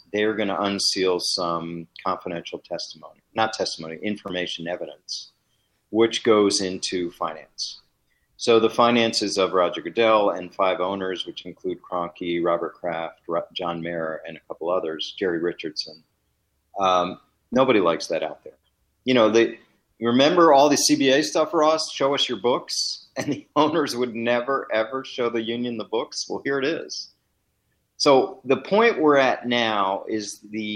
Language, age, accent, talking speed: English, 40-59, American, 155 wpm